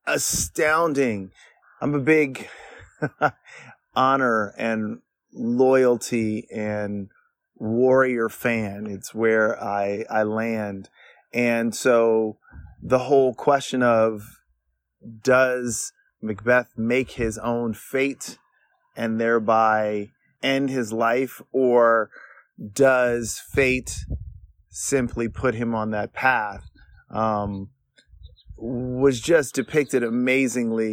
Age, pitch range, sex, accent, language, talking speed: 30-49, 105-130 Hz, male, American, English, 90 wpm